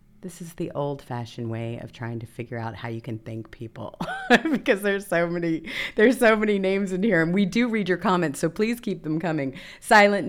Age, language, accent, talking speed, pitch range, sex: 30-49, English, American, 215 wpm, 125-180 Hz, female